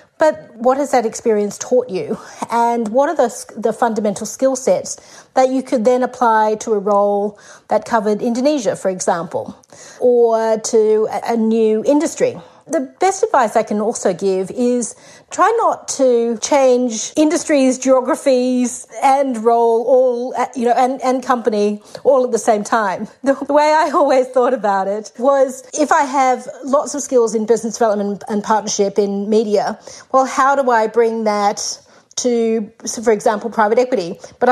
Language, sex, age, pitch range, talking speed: English, female, 40-59, 210-255 Hz, 165 wpm